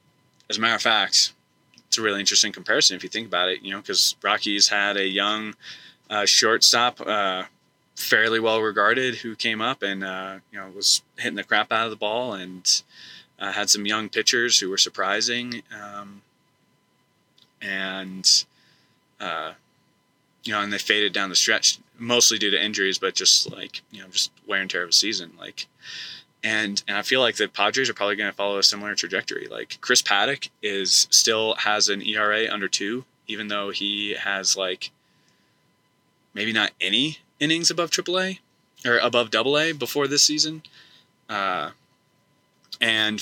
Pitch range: 100-120 Hz